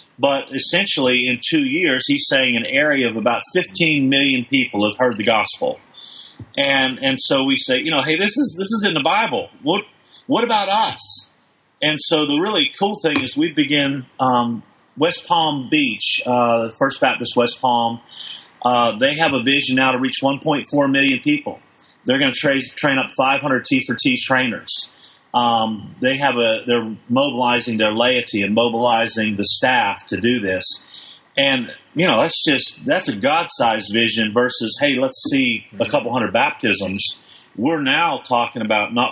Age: 40-59